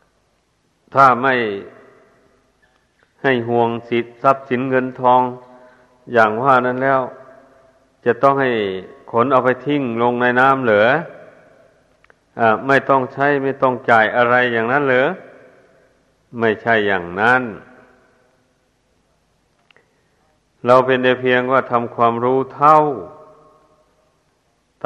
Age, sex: 60-79, male